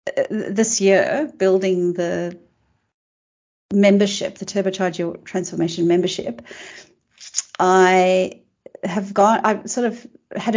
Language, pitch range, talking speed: English, 180-205 Hz, 95 wpm